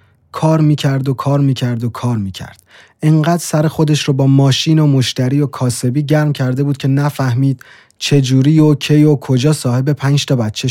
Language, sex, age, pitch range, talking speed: Persian, male, 30-49, 115-140 Hz, 180 wpm